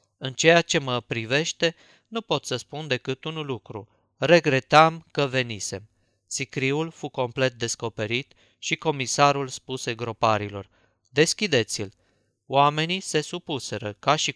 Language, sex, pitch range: Romanian, male, 120-145 Hz